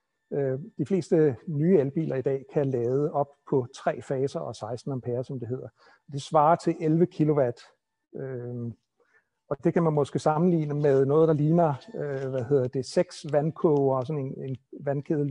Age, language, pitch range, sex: 60-79, Danish, 135-175 Hz, male